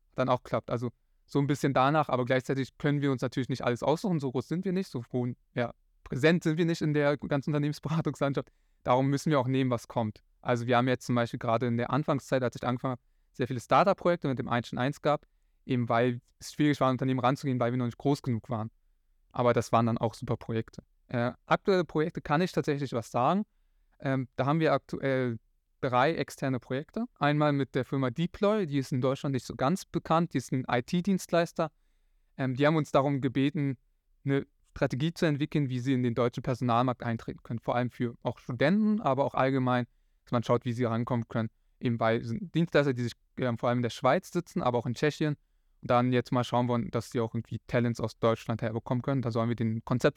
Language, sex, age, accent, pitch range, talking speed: German, male, 20-39, German, 120-145 Hz, 220 wpm